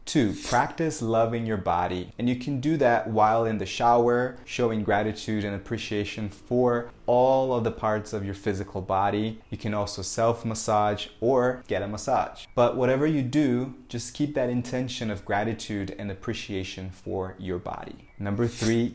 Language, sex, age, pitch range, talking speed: English, male, 20-39, 105-125 Hz, 170 wpm